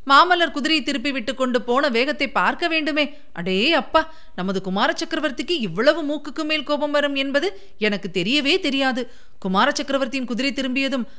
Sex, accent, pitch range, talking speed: female, native, 205-300 Hz, 145 wpm